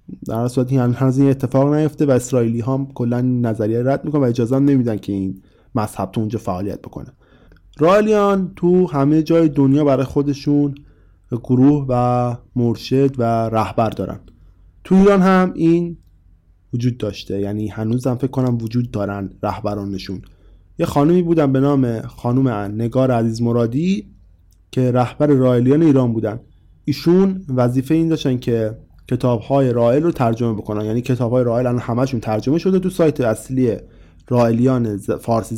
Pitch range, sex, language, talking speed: 110-140 Hz, male, Persian, 145 wpm